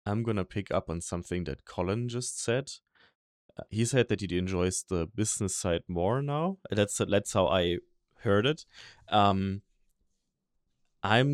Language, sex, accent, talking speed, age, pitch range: English, male, German, 160 wpm, 30-49, 95-110 Hz